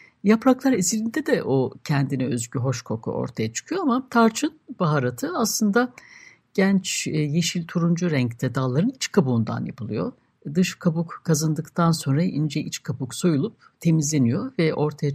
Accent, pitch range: native, 140-220 Hz